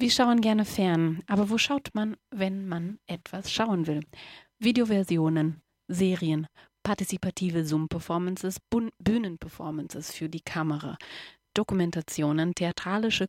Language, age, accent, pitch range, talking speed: German, 30-49, German, 165-195 Hz, 110 wpm